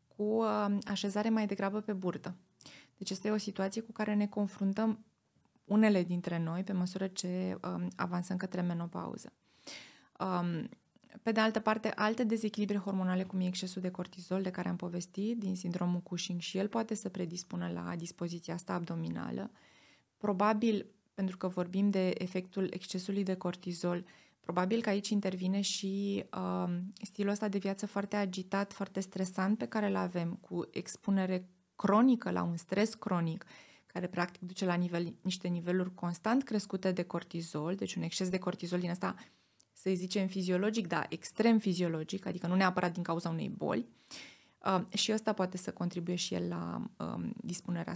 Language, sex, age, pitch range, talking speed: Romanian, female, 20-39, 175-205 Hz, 160 wpm